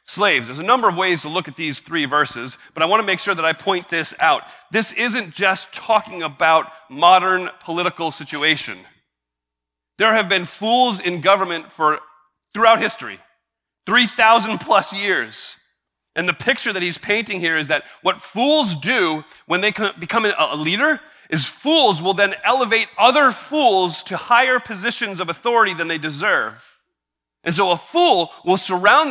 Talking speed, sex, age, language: 165 wpm, male, 40-59, English